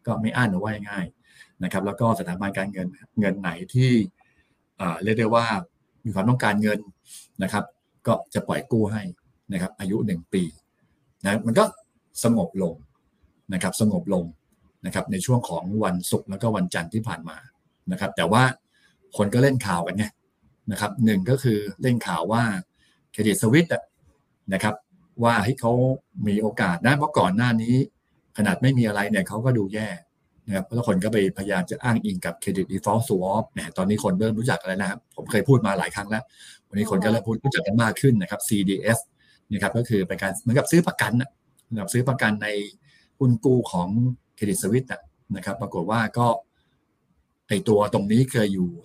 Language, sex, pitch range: Thai, male, 100-125 Hz